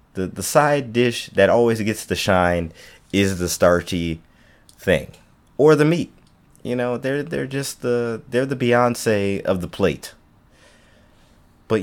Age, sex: 30-49, male